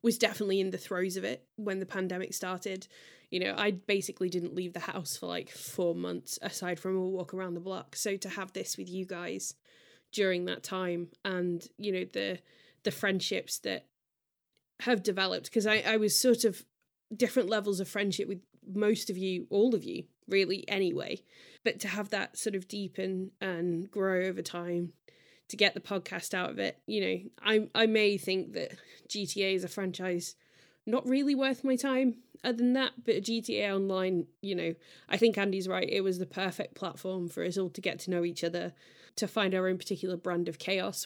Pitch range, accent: 180-215 Hz, British